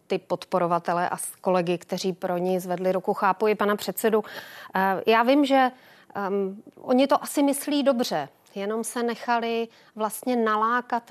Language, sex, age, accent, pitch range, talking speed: Czech, female, 30-49, native, 190-220 Hz, 135 wpm